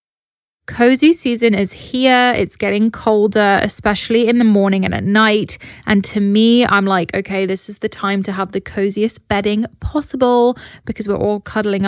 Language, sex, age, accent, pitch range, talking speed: English, female, 20-39, British, 200-230 Hz, 170 wpm